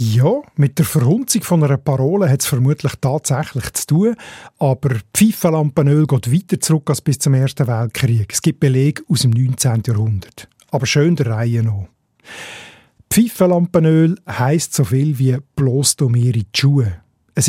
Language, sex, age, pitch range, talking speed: German, male, 50-69, 130-165 Hz, 145 wpm